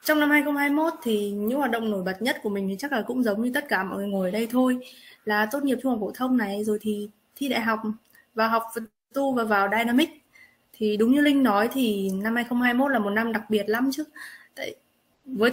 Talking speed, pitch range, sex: 245 wpm, 210-255 Hz, female